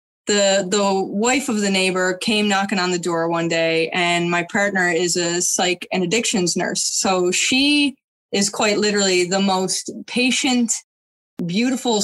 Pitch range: 190-260 Hz